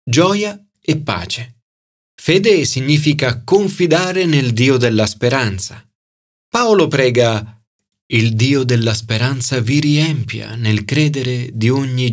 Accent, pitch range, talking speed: native, 110-155 Hz, 110 wpm